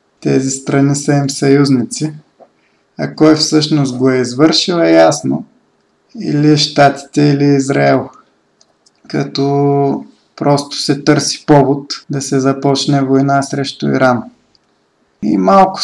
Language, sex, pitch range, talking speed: Bulgarian, male, 135-150 Hz, 115 wpm